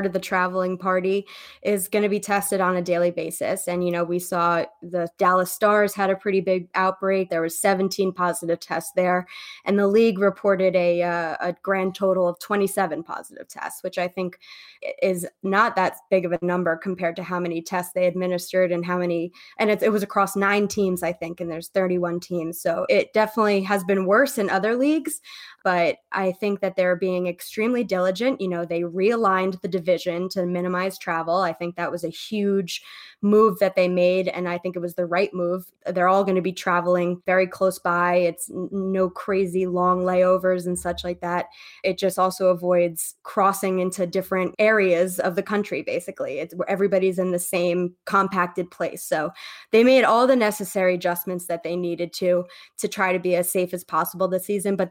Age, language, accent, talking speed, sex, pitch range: 20-39, English, American, 200 wpm, female, 180-200 Hz